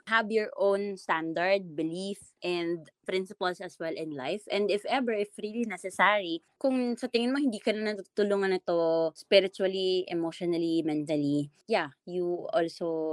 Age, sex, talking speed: 20-39, female, 140 wpm